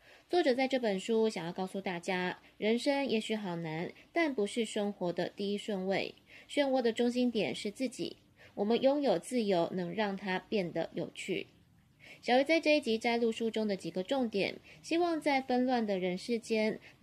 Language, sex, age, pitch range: Chinese, female, 20-39, 190-240 Hz